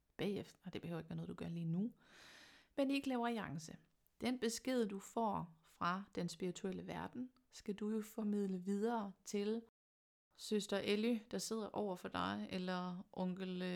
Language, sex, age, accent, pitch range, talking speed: Danish, female, 30-49, native, 180-225 Hz, 160 wpm